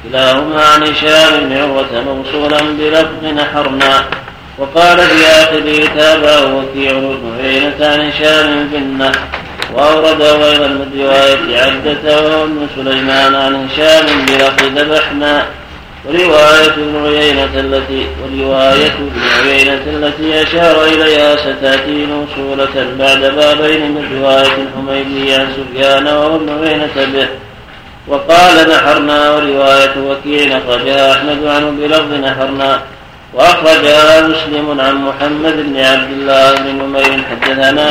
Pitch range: 135-155 Hz